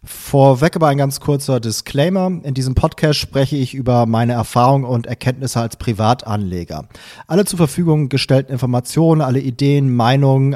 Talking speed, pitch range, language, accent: 150 wpm, 120-145 Hz, German, German